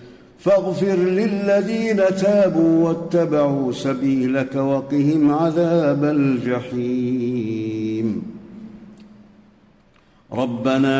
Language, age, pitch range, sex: Arabic, 50-69, 125-150 Hz, male